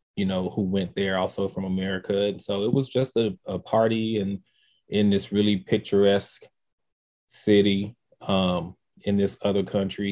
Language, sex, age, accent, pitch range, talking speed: English, male, 20-39, American, 95-105 Hz, 165 wpm